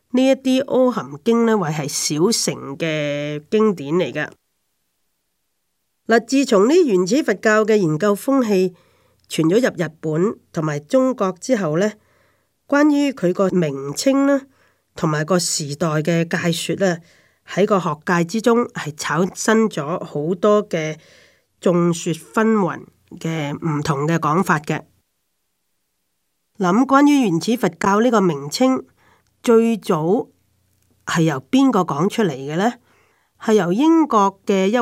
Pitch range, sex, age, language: 155-220 Hz, female, 30-49, Chinese